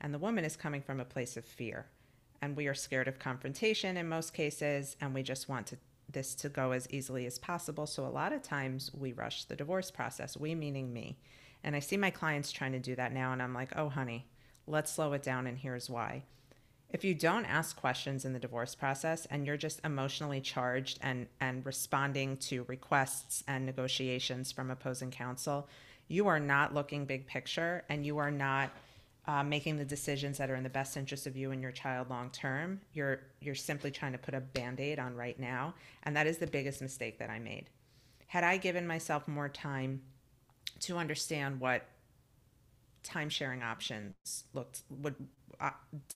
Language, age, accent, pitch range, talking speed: English, 40-59, American, 130-150 Hz, 195 wpm